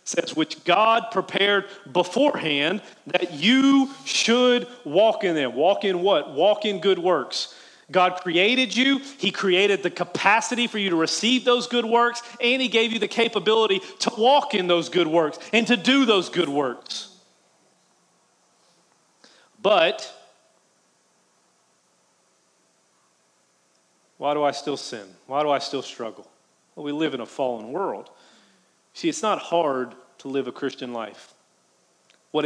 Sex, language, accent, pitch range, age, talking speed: male, English, American, 135-205 Hz, 40-59, 145 wpm